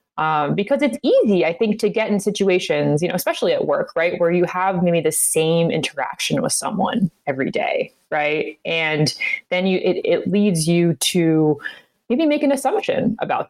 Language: English